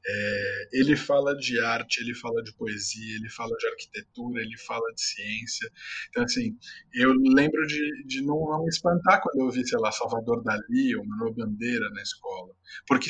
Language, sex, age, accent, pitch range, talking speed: Portuguese, male, 20-39, Brazilian, 125-180 Hz, 185 wpm